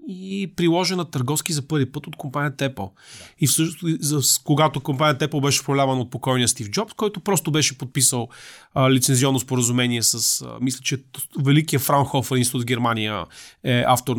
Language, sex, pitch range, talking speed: Bulgarian, male, 130-170 Hz, 170 wpm